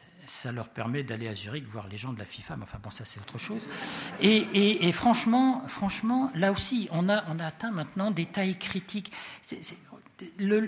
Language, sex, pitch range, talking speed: French, male, 135-210 Hz, 215 wpm